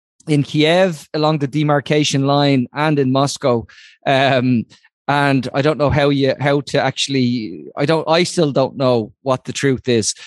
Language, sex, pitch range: English, male, 135-155 Hz